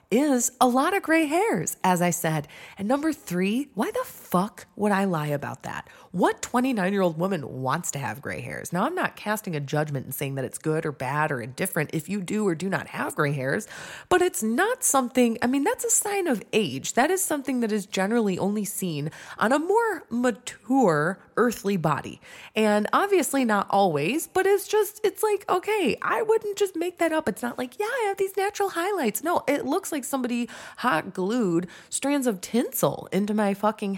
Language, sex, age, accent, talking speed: English, female, 20-39, American, 205 wpm